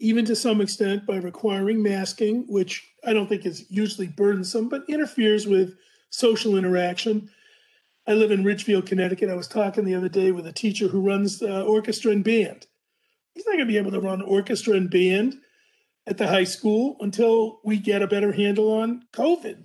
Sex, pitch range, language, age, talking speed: male, 195-230 Hz, English, 40-59, 190 wpm